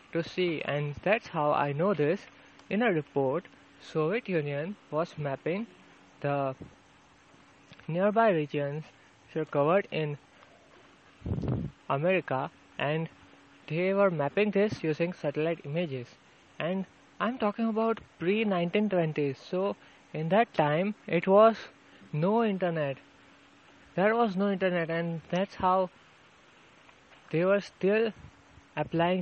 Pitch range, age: 150-195 Hz, 20-39